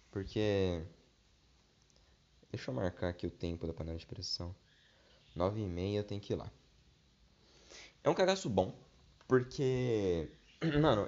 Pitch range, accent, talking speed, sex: 90-125 Hz, Brazilian, 135 wpm, male